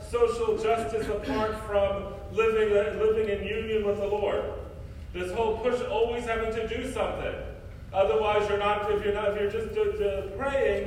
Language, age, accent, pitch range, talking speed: English, 40-59, American, 195-255 Hz, 165 wpm